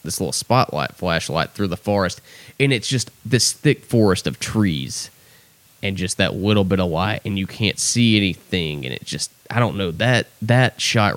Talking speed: 195 wpm